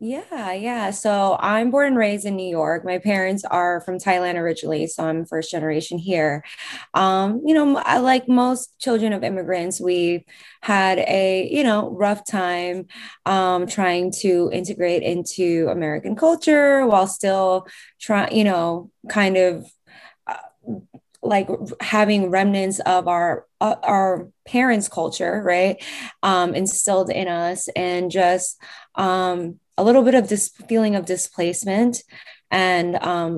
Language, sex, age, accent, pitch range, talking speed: English, female, 20-39, American, 170-200 Hz, 135 wpm